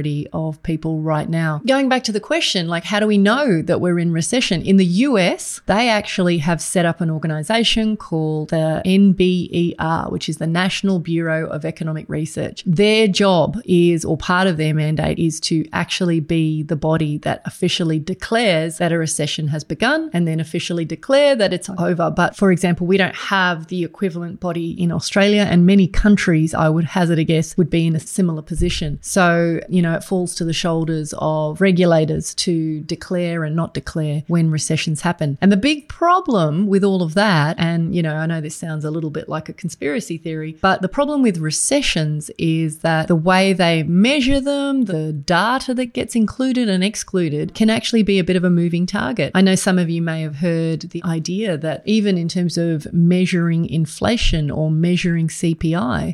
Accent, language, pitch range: Australian, English, 160-195 Hz